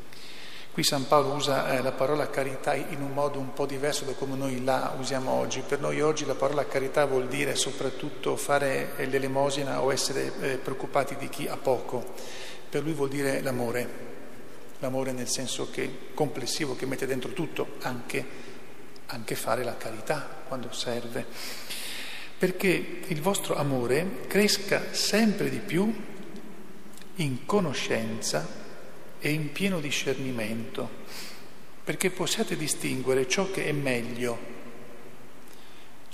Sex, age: male, 50-69